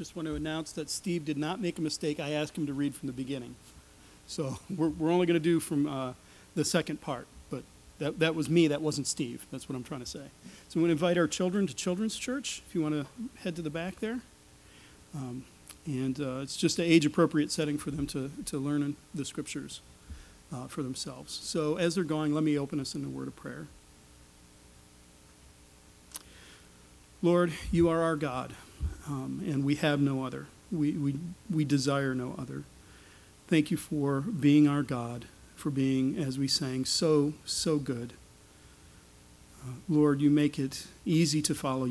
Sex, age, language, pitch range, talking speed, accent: male, 40-59, English, 125-155 Hz, 190 wpm, American